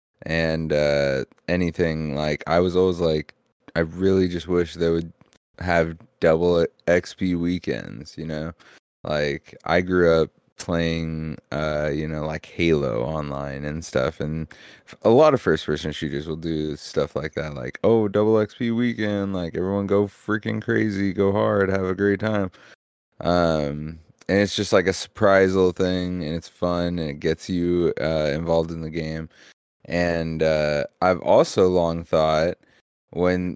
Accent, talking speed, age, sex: American, 155 wpm, 20-39, male